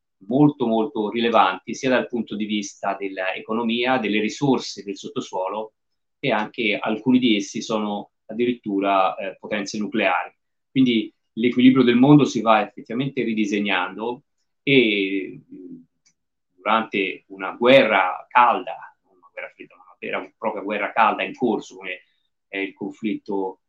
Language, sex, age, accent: Italian, male, 30-49, native